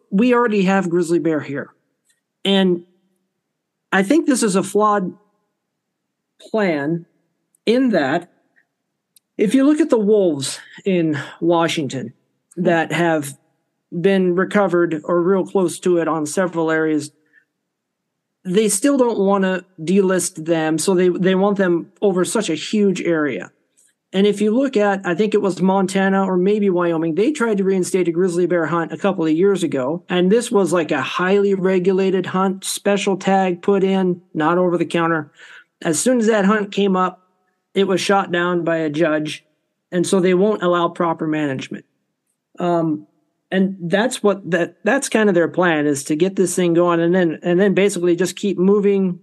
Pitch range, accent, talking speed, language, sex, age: 165-200 Hz, American, 170 wpm, English, male, 40-59